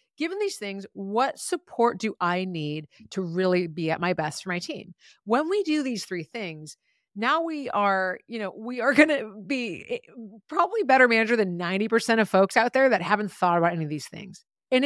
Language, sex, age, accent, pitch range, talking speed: English, female, 30-49, American, 185-255 Hz, 205 wpm